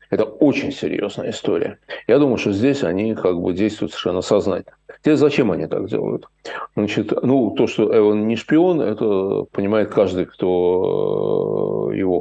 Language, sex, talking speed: Russian, male, 150 wpm